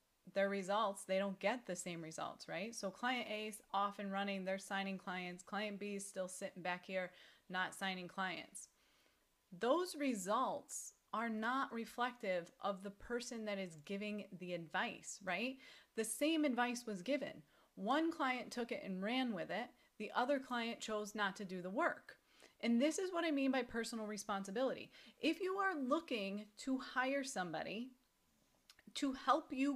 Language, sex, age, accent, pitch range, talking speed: English, female, 30-49, American, 195-245 Hz, 170 wpm